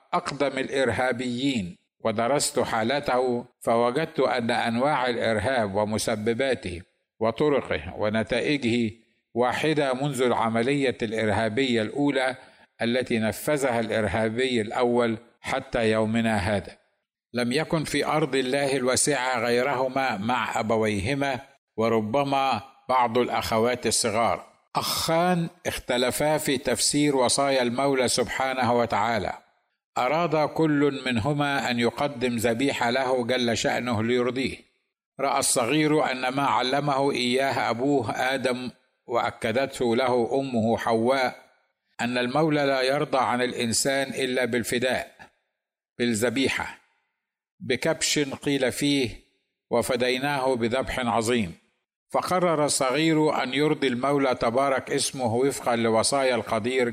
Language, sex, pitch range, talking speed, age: Arabic, male, 115-140 Hz, 95 wpm, 60-79